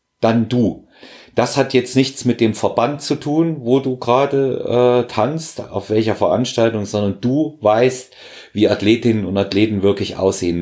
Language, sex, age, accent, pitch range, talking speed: German, male, 40-59, German, 90-110 Hz, 160 wpm